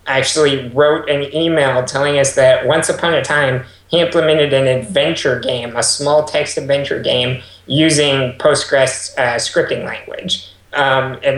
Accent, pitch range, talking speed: American, 125-145 Hz, 150 wpm